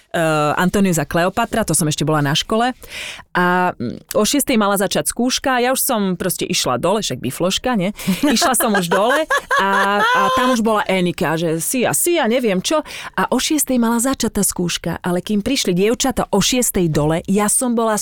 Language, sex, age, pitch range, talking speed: Slovak, female, 30-49, 185-245 Hz, 195 wpm